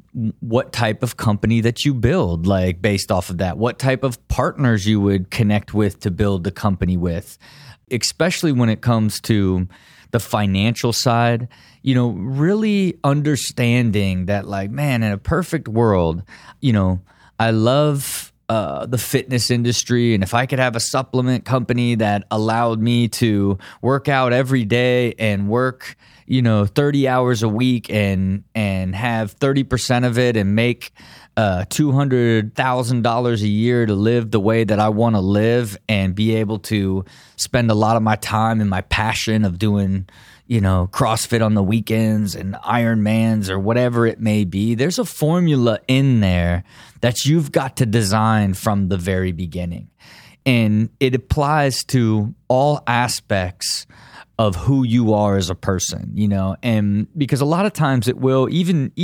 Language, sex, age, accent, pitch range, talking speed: English, male, 20-39, American, 105-125 Hz, 165 wpm